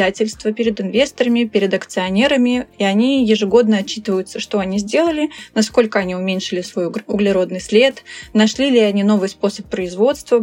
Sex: female